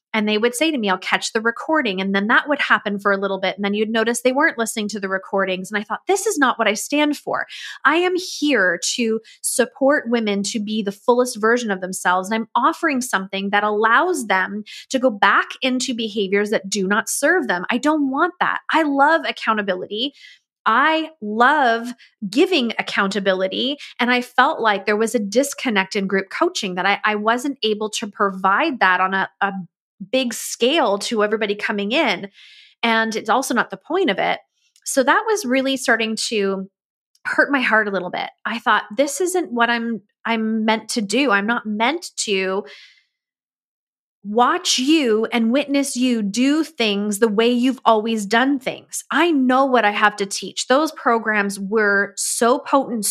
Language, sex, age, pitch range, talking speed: English, female, 20-39, 205-270 Hz, 190 wpm